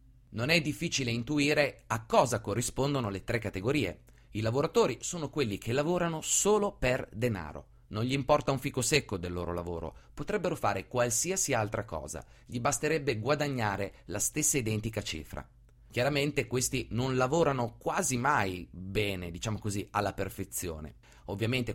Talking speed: 145 wpm